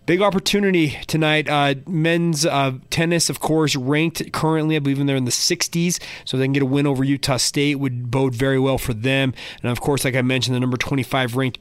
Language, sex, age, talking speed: English, male, 30-49, 215 wpm